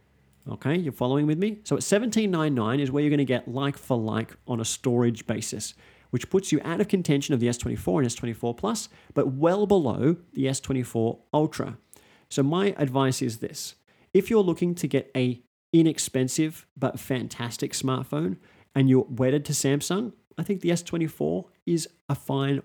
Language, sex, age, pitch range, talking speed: English, male, 40-59, 120-165 Hz, 175 wpm